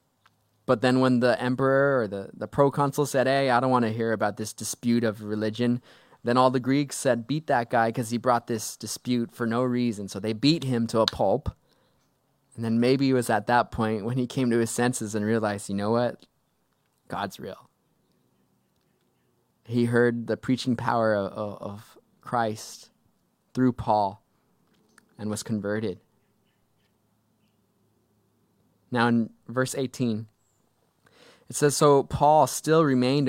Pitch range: 110-130 Hz